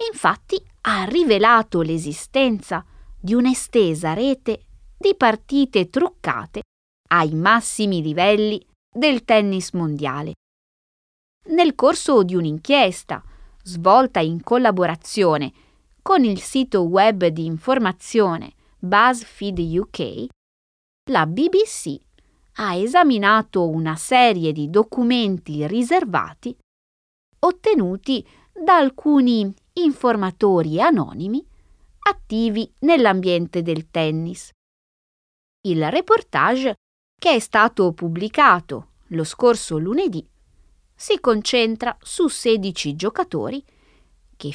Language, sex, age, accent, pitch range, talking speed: Italian, female, 20-39, native, 170-265 Hz, 85 wpm